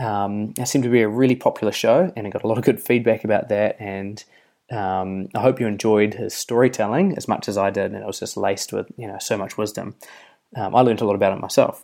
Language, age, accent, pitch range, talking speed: English, 20-39, Australian, 105-130 Hz, 260 wpm